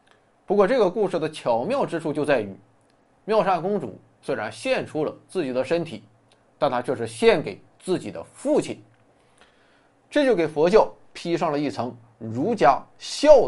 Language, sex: Chinese, male